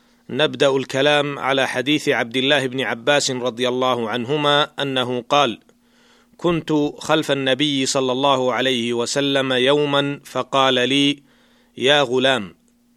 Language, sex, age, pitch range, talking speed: Arabic, male, 40-59, 130-150 Hz, 115 wpm